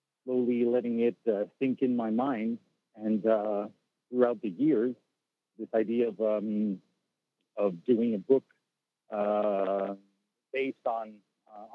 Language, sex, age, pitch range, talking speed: English, male, 50-69, 100-120 Hz, 130 wpm